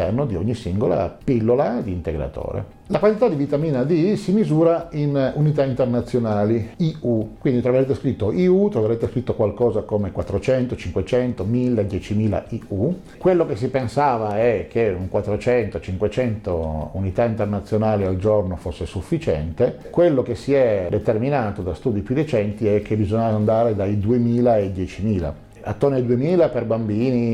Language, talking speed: Italian, 145 wpm